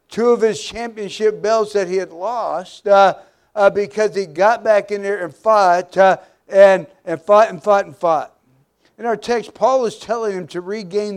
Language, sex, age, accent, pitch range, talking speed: English, male, 60-79, American, 185-220 Hz, 195 wpm